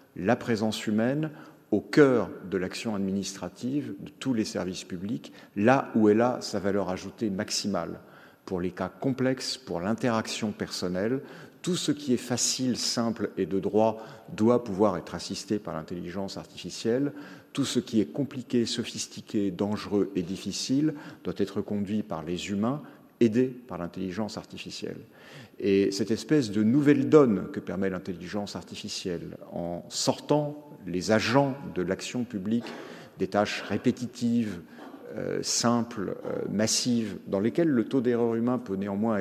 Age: 50-69